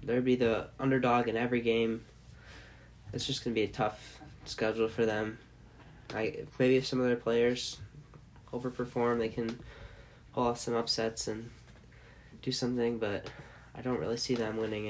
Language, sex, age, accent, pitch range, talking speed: English, male, 10-29, American, 110-125 Hz, 170 wpm